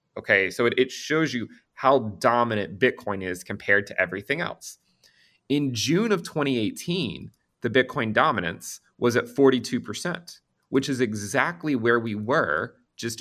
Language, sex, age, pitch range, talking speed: English, male, 30-49, 105-140 Hz, 145 wpm